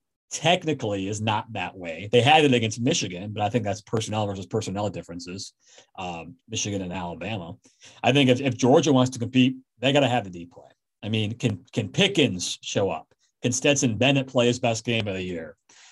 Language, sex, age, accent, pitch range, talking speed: English, male, 40-59, American, 100-135 Hz, 205 wpm